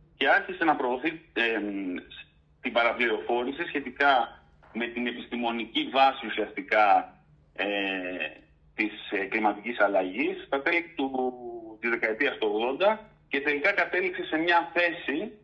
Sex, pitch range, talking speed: male, 110-150 Hz, 115 wpm